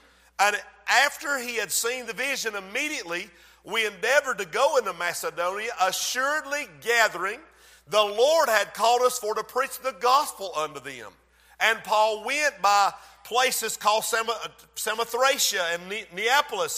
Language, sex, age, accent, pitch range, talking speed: English, male, 50-69, American, 225-290 Hz, 130 wpm